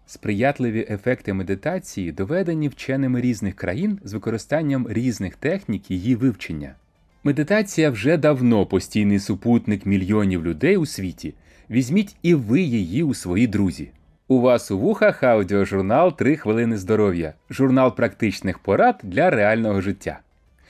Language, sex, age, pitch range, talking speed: Ukrainian, male, 30-49, 95-130 Hz, 130 wpm